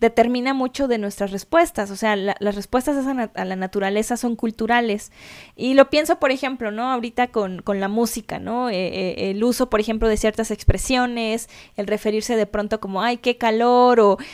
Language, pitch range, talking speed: Spanish, 210-255 Hz, 190 wpm